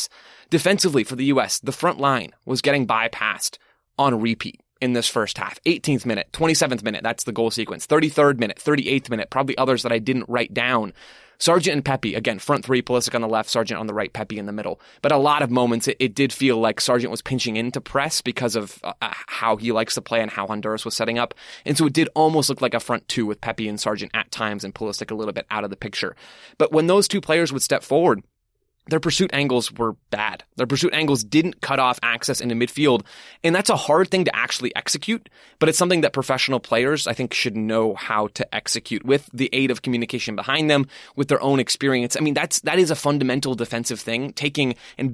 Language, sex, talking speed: English, male, 230 wpm